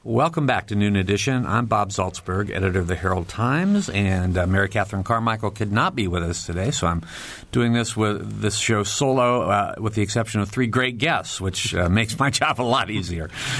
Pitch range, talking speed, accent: 95-115 Hz, 205 wpm, American